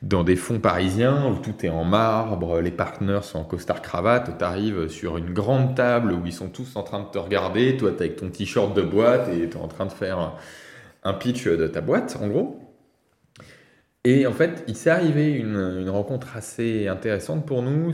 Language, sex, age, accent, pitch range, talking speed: French, male, 20-39, French, 95-125 Hz, 215 wpm